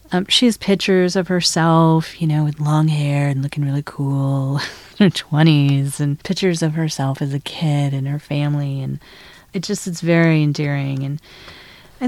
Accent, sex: American, female